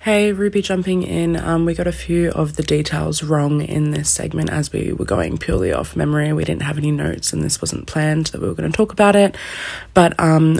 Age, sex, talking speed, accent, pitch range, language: 20-39, female, 240 wpm, Australian, 145-160 Hz, English